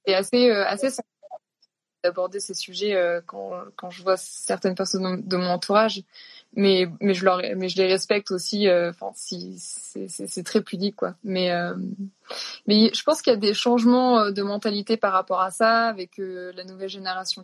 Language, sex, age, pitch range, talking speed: French, female, 20-39, 185-220 Hz, 195 wpm